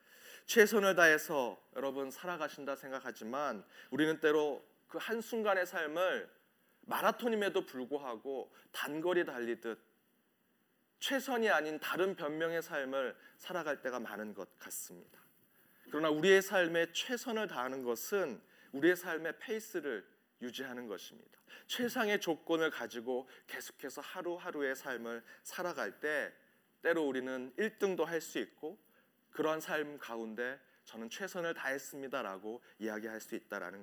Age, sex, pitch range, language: 30-49, male, 125-175 Hz, Korean